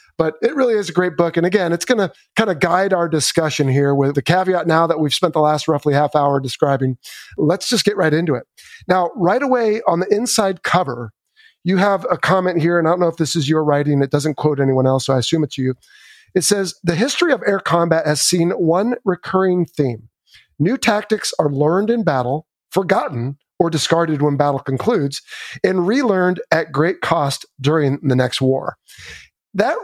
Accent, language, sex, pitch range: American, English, male, 145-190 Hz